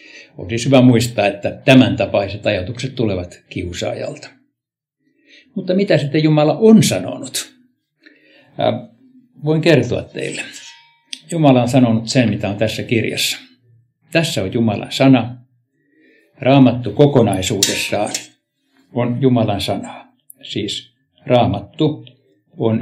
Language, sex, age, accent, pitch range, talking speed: Finnish, male, 60-79, native, 105-140 Hz, 105 wpm